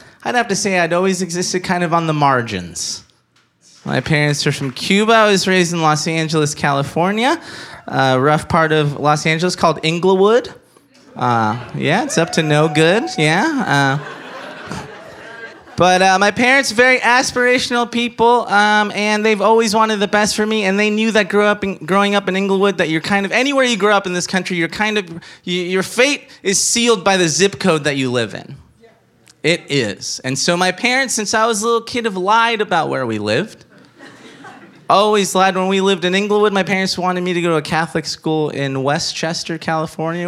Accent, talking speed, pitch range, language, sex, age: American, 190 wpm, 160-210 Hz, English, male, 20-39